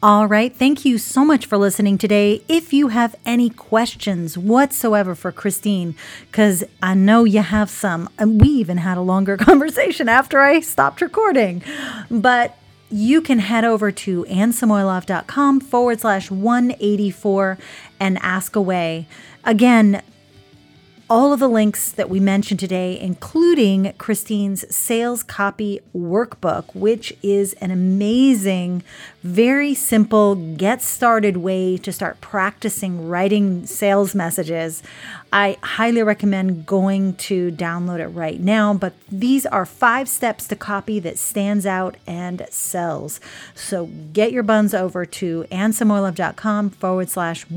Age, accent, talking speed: 30-49, American, 135 wpm